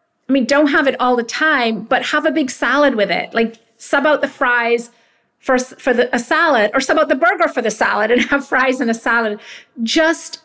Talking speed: 225 wpm